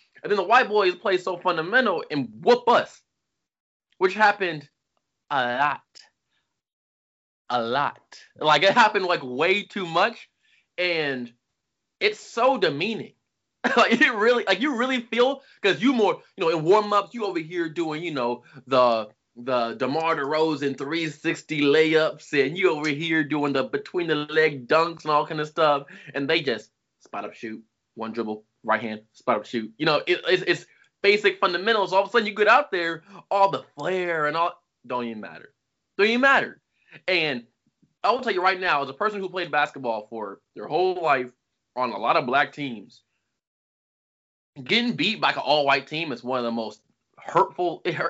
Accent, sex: American, male